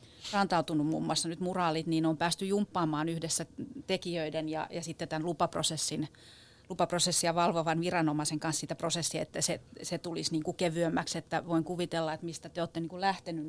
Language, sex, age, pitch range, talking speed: Finnish, female, 30-49, 155-180 Hz, 175 wpm